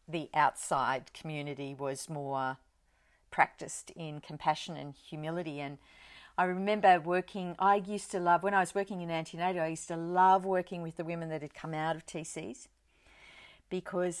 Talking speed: 165 wpm